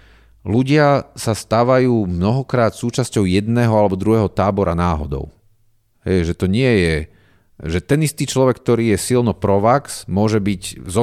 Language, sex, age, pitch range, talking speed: Slovak, male, 40-59, 85-110 Hz, 140 wpm